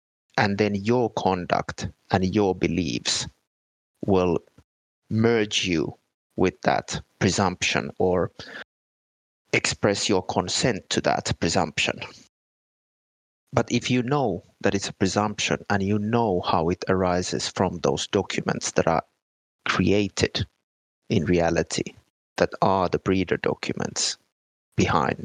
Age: 30-49